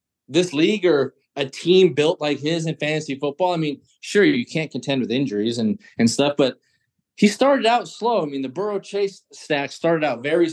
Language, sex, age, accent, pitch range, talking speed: English, male, 30-49, American, 120-160 Hz, 205 wpm